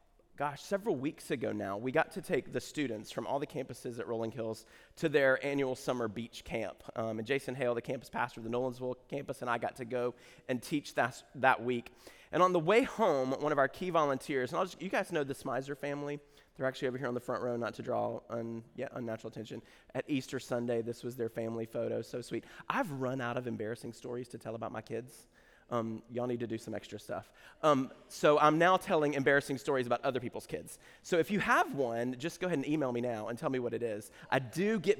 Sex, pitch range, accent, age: male, 120-150 Hz, American, 30-49